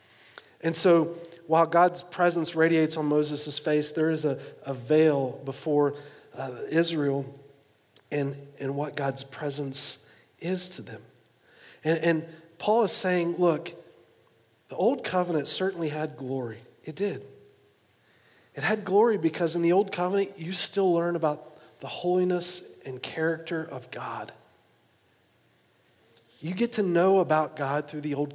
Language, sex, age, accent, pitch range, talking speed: English, male, 50-69, American, 145-190 Hz, 140 wpm